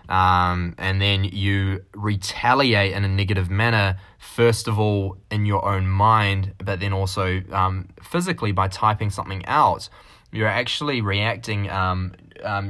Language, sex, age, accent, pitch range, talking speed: English, male, 10-29, Australian, 95-110 Hz, 140 wpm